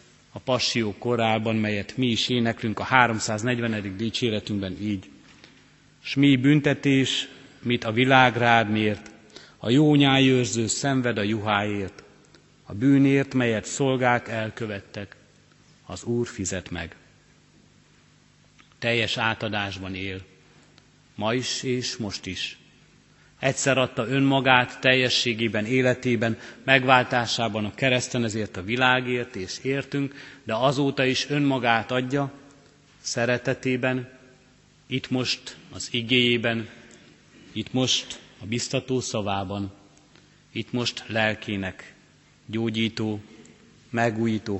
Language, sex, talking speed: Hungarian, male, 95 wpm